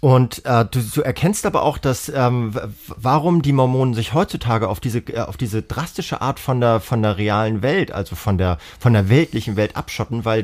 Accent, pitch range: German, 100-130 Hz